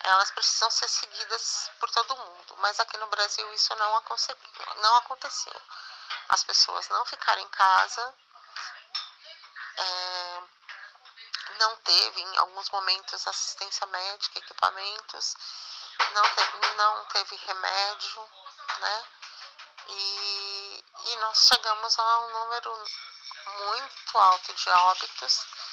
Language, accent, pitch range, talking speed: Portuguese, Brazilian, 190-230 Hz, 110 wpm